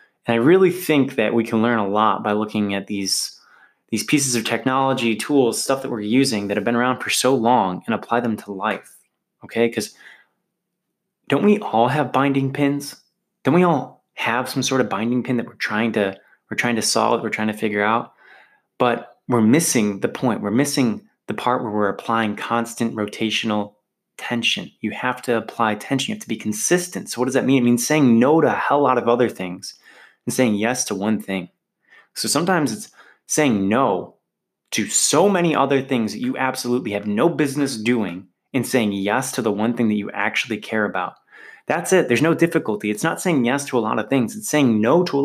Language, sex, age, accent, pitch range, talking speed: English, male, 20-39, American, 105-135 Hz, 215 wpm